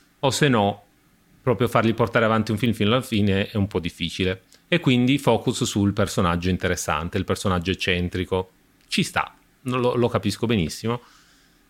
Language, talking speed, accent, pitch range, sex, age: Italian, 160 wpm, native, 95-115 Hz, male, 30-49